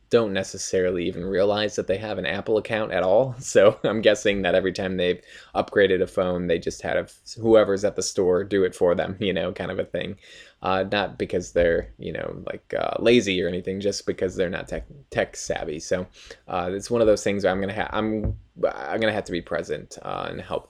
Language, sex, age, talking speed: English, male, 20-39, 225 wpm